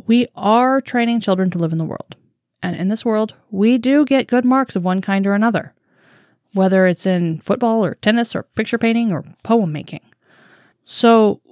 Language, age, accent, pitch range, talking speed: English, 20-39, American, 175-230 Hz, 190 wpm